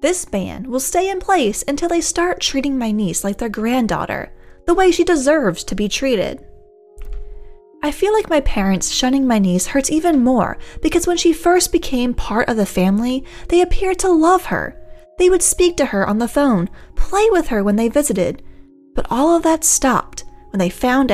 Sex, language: female, English